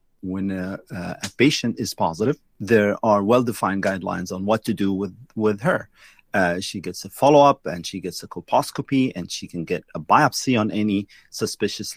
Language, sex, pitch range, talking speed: English, male, 100-120 Hz, 180 wpm